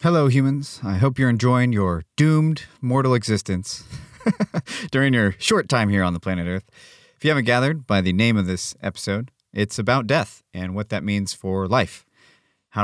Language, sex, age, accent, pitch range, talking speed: English, male, 30-49, American, 95-125 Hz, 180 wpm